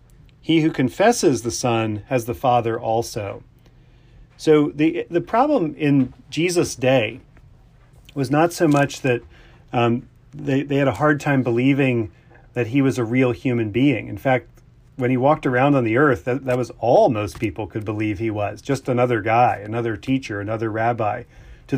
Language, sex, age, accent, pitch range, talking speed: English, male, 40-59, American, 120-145 Hz, 175 wpm